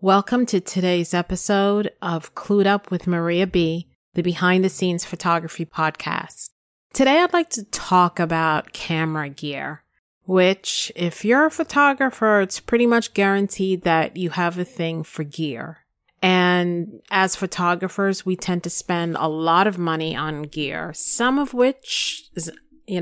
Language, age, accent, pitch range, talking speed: English, 30-49, American, 165-195 Hz, 150 wpm